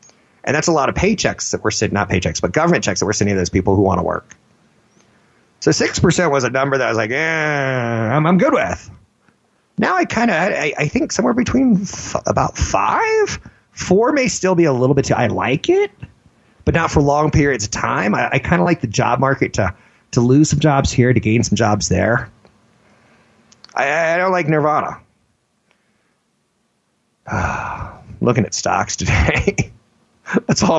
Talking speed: 195 wpm